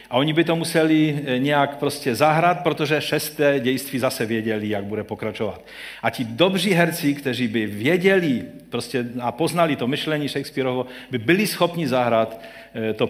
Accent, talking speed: native, 155 wpm